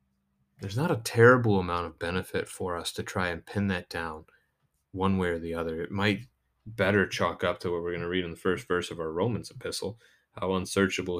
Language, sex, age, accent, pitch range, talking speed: English, male, 30-49, American, 90-115 Hz, 220 wpm